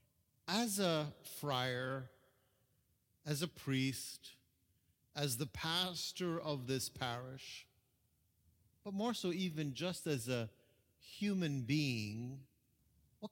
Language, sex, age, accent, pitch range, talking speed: English, male, 50-69, American, 105-150 Hz, 100 wpm